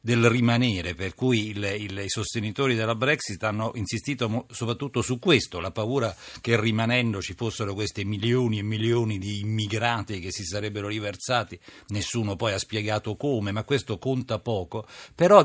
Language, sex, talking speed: Italian, male, 150 wpm